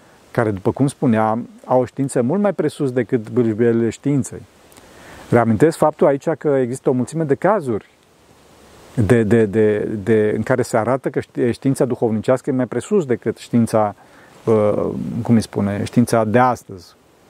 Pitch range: 115-155 Hz